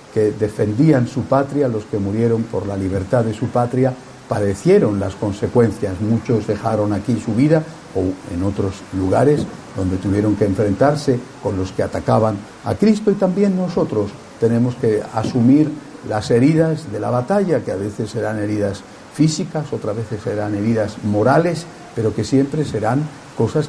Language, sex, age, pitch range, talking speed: Spanish, male, 50-69, 105-140 Hz, 155 wpm